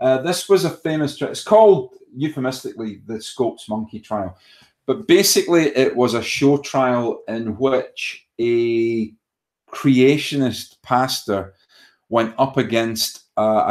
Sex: male